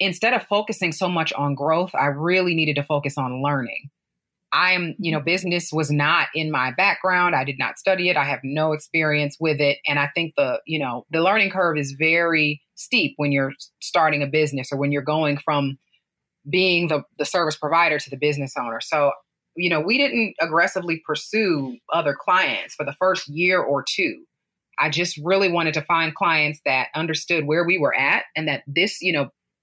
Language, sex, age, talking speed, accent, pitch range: English, female, 30-49, 200 wpm, American, 145-180 Hz